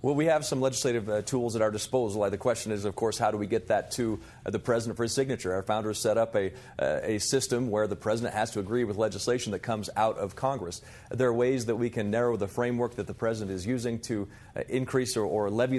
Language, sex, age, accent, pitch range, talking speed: English, male, 40-59, American, 110-135 Hz, 260 wpm